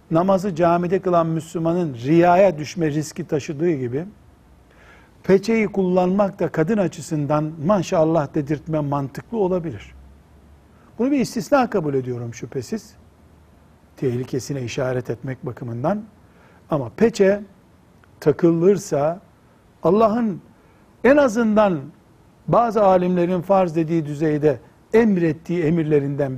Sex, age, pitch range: male, 60-79, 145-190 Hz